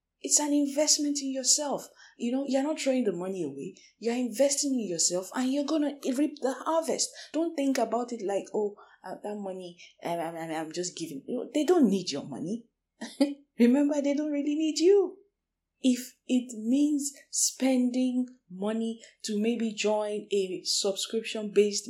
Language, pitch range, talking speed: English, 185-270 Hz, 160 wpm